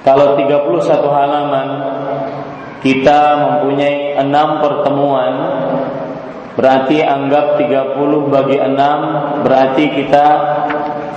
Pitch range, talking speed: 140-150 Hz, 75 wpm